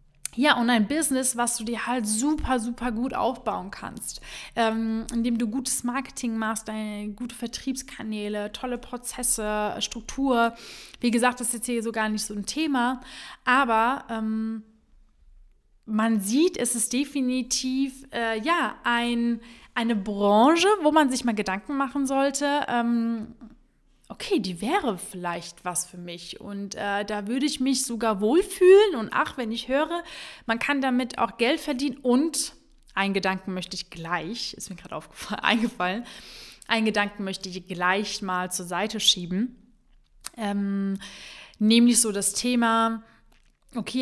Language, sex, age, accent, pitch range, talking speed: German, female, 20-39, German, 205-250 Hz, 145 wpm